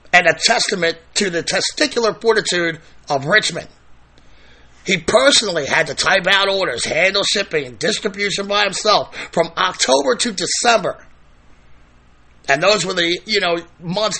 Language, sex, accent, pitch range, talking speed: English, male, American, 155-205 Hz, 140 wpm